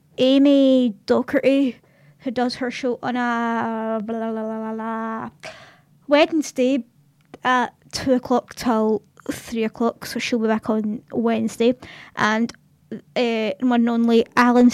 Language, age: English, 20-39